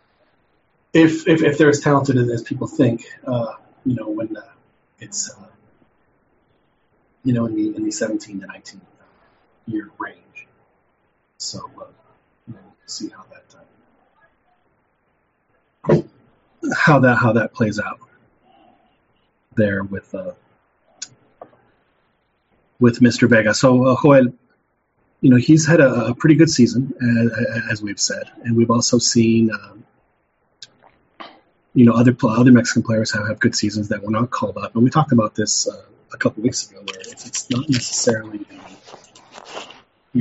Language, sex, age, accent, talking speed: English, male, 30-49, American, 150 wpm